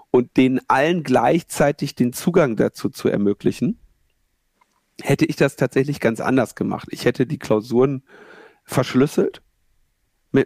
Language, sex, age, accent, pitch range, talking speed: German, male, 50-69, German, 125-155 Hz, 125 wpm